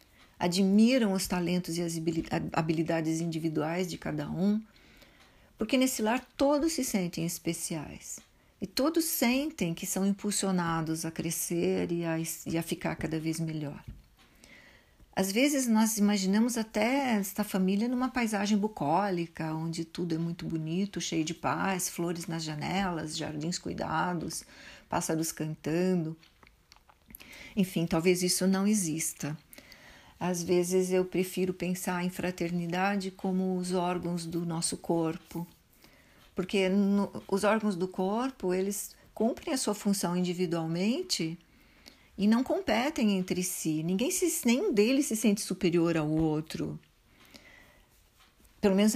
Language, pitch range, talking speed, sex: Portuguese, 170-205 Hz, 125 wpm, female